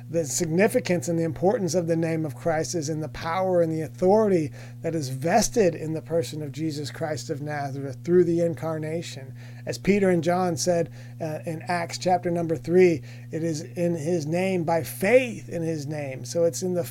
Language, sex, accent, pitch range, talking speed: English, male, American, 150-175 Hz, 200 wpm